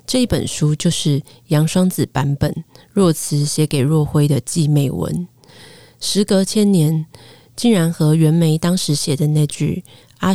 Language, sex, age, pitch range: Chinese, female, 30-49, 145-175 Hz